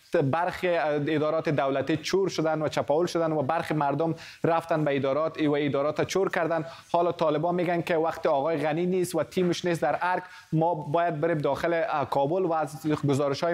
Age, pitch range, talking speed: 30-49, 150-180 Hz, 170 wpm